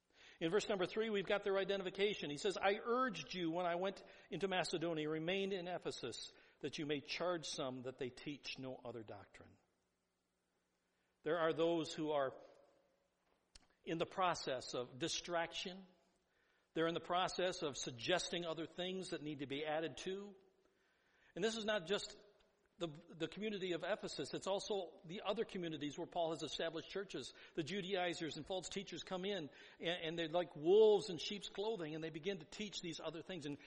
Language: English